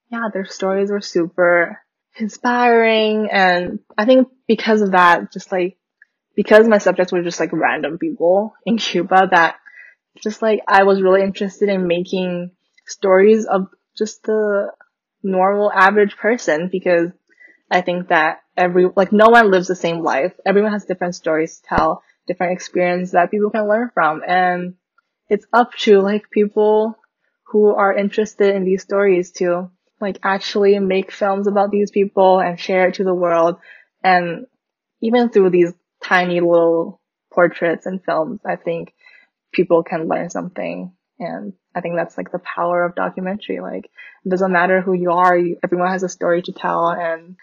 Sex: female